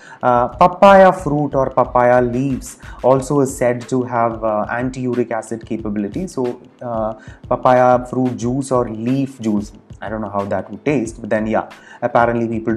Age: 30-49